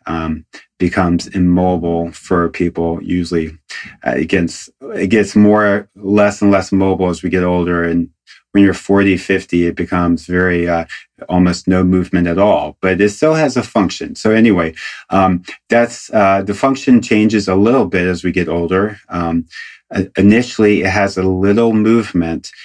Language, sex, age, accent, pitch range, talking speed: English, male, 30-49, American, 90-100 Hz, 165 wpm